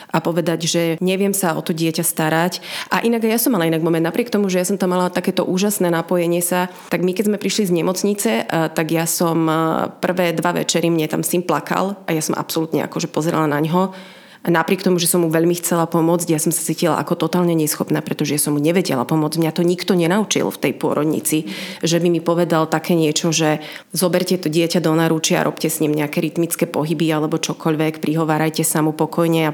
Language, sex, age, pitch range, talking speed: Slovak, female, 30-49, 160-180 Hz, 215 wpm